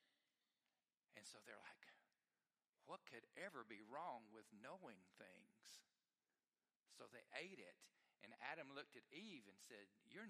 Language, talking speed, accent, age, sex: English, 135 wpm, American, 50-69, male